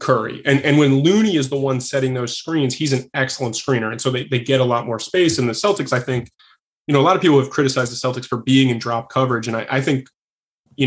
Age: 20-39